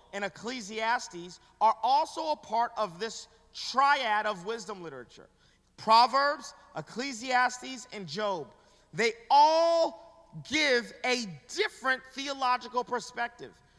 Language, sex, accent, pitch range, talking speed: English, male, American, 215-265 Hz, 100 wpm